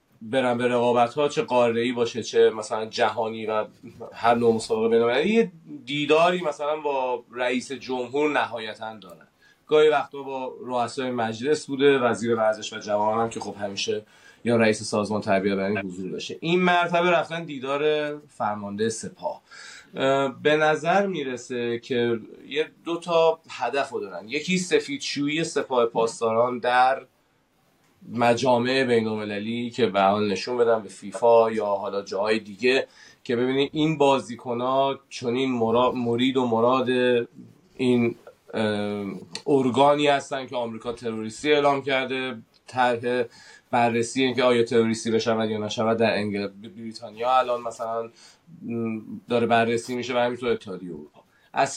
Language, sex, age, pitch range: Persian, male, 30-49, 115-145 Hz